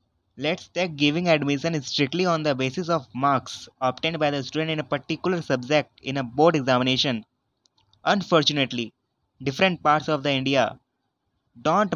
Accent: Indian